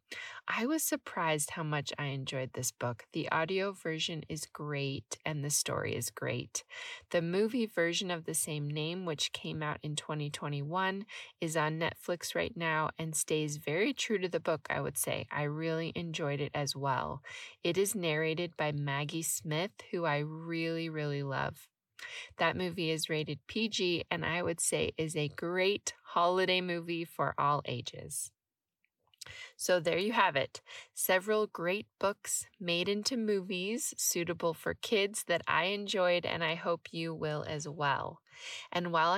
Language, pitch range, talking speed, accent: English, 150-205 Hz, 160 wpm, American